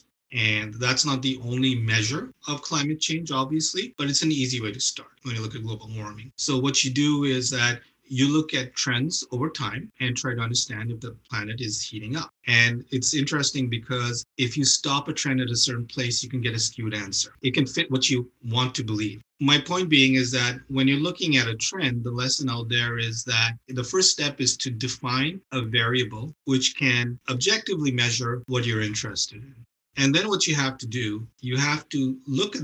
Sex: male